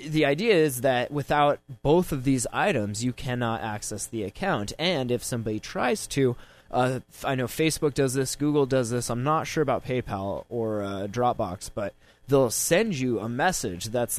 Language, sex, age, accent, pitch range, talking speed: English, male, 20-39, American, 110-145 Hz, 180 wpm